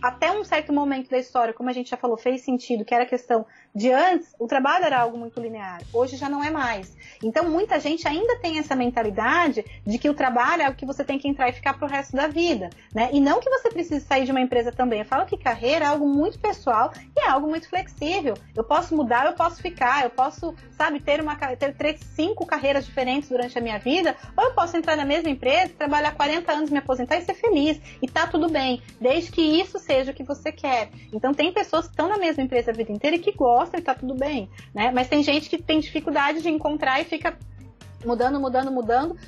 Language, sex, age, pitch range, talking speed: Portuguese, female, 30-49, 250-315 Hz, 240 wpm